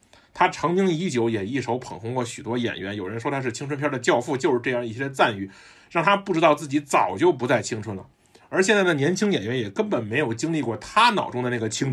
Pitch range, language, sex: 120-180 Hz, Chinese, male